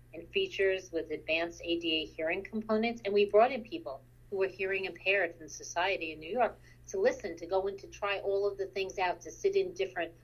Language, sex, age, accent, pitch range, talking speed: English, female, 40-59, American, 160-205 Hz, 215 wpm